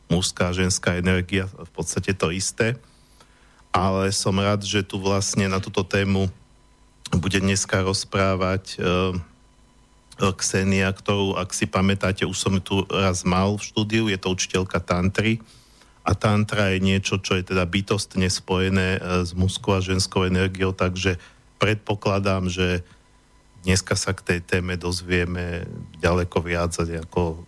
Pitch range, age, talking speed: 90-105 Hz, 50-69, 140 wpm